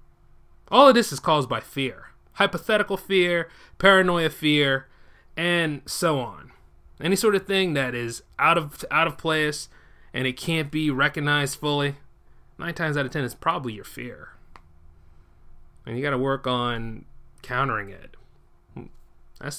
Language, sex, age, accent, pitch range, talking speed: English, male, 30-49, American, 115-155 Hz, 145 wpm